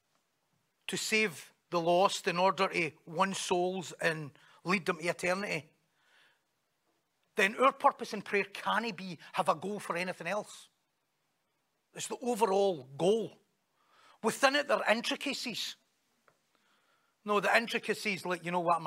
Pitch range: 175-215 Hz